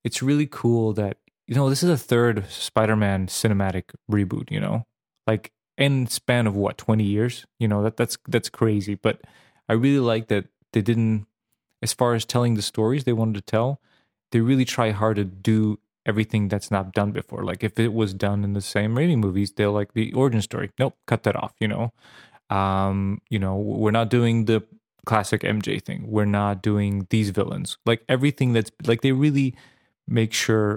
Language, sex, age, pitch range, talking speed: English, male, 20-39, 105-120 Hz, 195 wpm